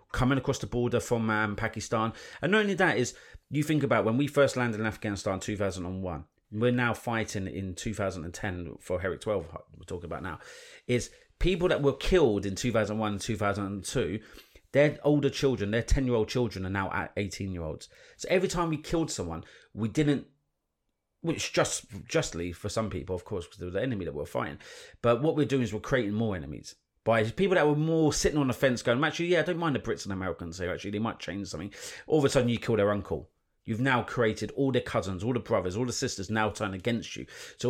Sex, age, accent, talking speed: male, 30-49, British, 225 wpm